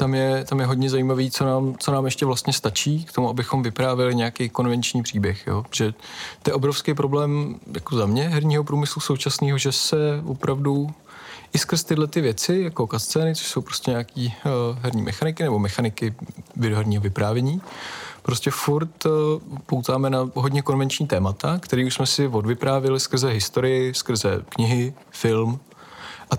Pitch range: 120-145 Hz